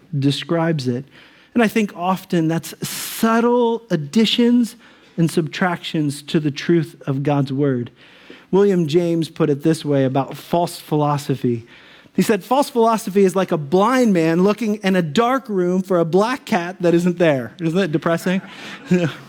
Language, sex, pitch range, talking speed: English, male, 150-190 Hz, 155 wpm